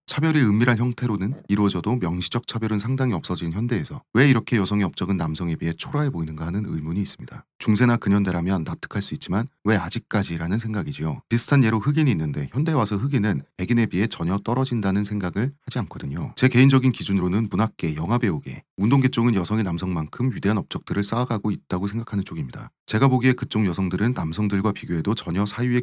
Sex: male